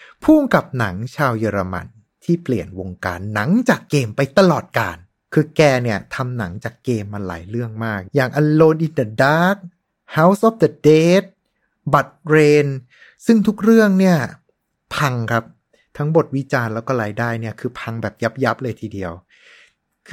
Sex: male